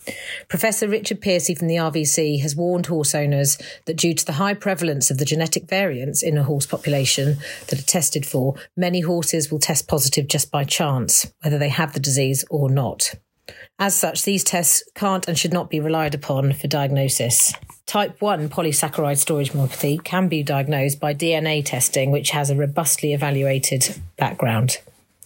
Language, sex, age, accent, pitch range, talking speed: English, female, 40-59, British, 145-180 Hz, 175 wpm